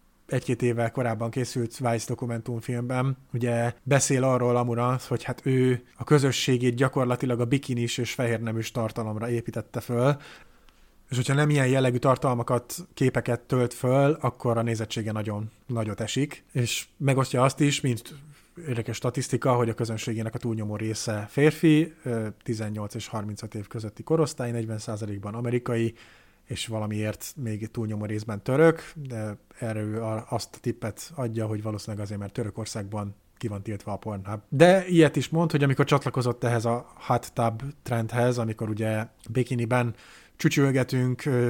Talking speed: 145 wpm